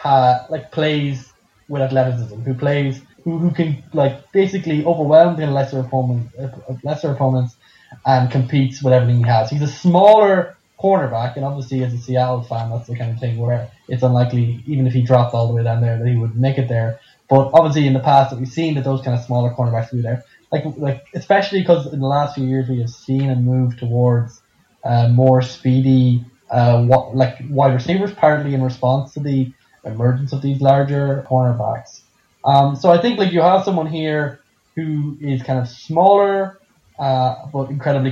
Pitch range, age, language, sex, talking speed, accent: 125-145 Hz, 10-29, English, male, 200 wpm, Irish